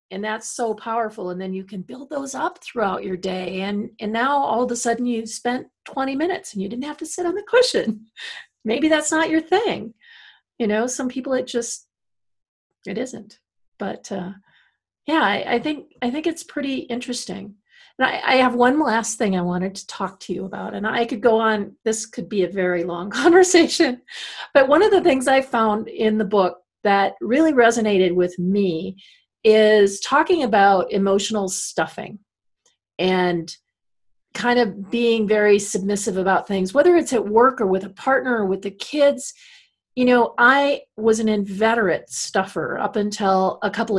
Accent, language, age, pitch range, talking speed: American, English, 40-59, 190-255 Hz, 185 wpm